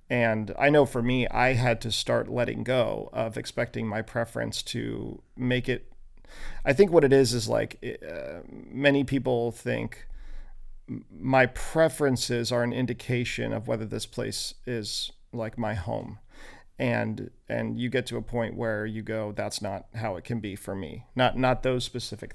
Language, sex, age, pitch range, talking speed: English, male, 40-59, 115-130 Hz, 170 wpm